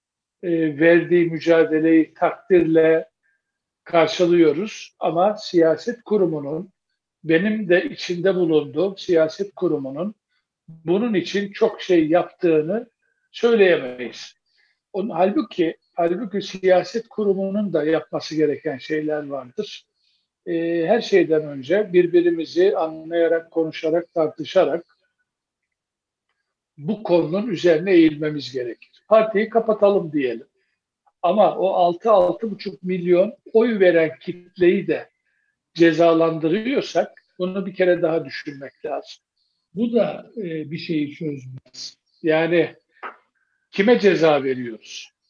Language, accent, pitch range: Turkish, native, 160-210 Hz